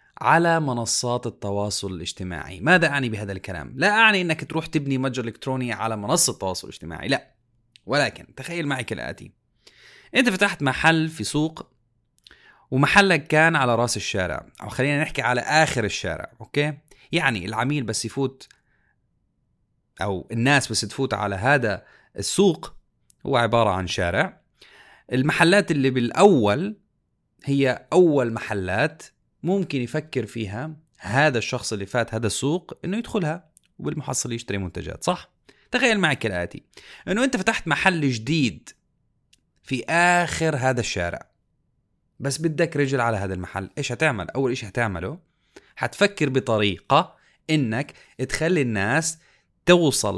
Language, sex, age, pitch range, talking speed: Arabic, male, 30-49, 110-160 Hz, 125 wpm